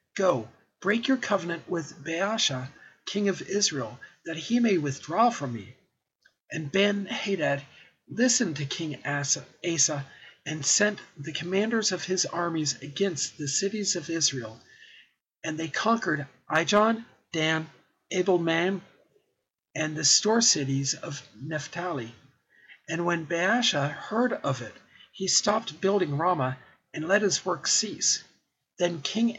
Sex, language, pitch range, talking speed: male, English, 145-195 Hz, 130 wpm